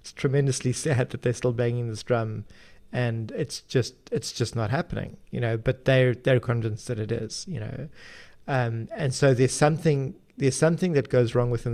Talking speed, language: 190 wpm, English